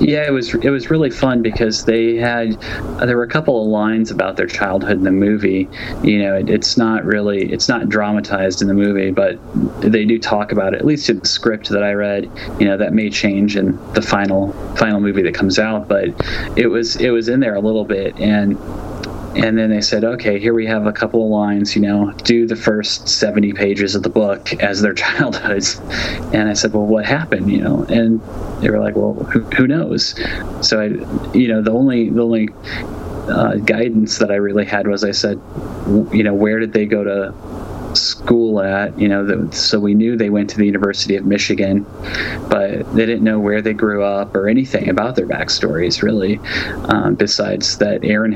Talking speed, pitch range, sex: 210 wpm, 100-110 Hz, male